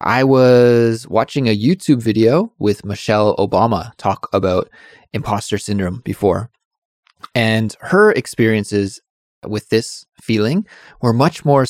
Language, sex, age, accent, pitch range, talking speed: English, male, 20-39, American, 100-115 Hz, 120 wpm